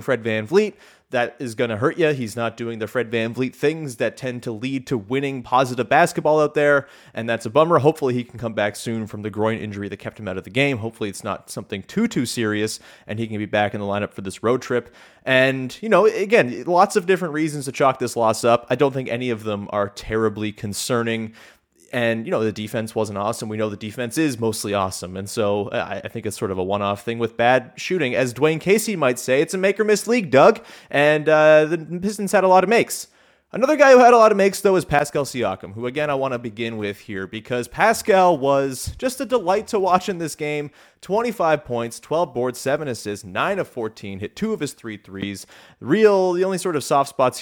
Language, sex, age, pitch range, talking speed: English, male, 30-49, 110-155 Hz, 240 wpm